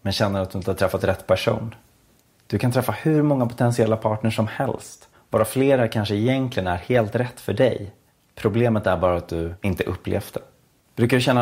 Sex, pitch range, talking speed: male, 95-115 Hz, 200 wpm